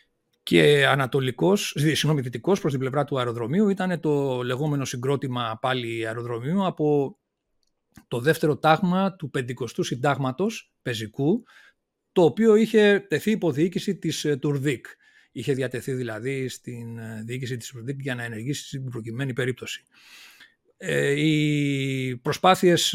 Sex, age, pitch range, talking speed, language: male, 40-59, 130-165 Hz, 120 wpm, Greek